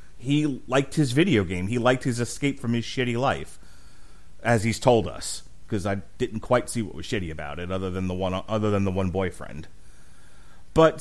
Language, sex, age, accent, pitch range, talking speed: English, male, 30-49, American, 110-150 Hz, 200 wpm